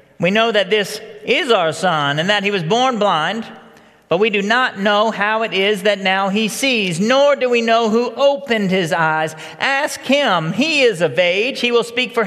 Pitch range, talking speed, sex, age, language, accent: 170-235 Hz, 210 wpm, male, 40-59, English, American